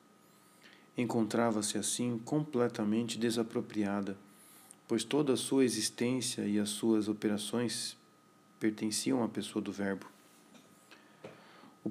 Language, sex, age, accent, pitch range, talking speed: Portuguese, male, 40-59, Brazilian, 110-125 Hz, 95 wpm